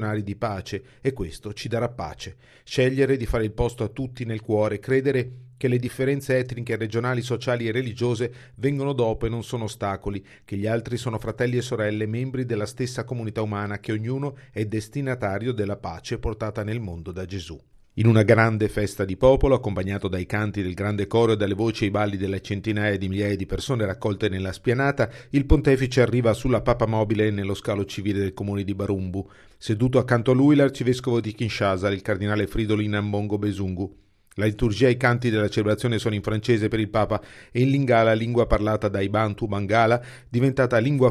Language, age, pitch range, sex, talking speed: Italian, 40-59, 100-125 Hz, male, 185 wpm